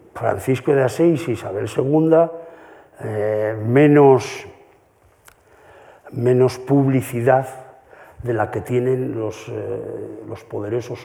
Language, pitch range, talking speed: Spanish, 110-130 Hz, 90 wpm